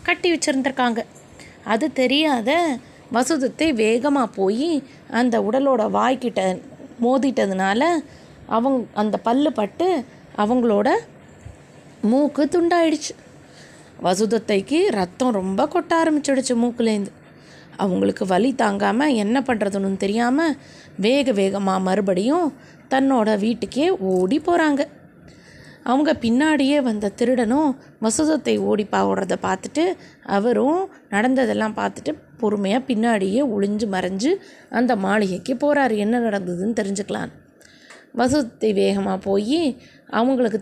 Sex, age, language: female, 20-39, Tamil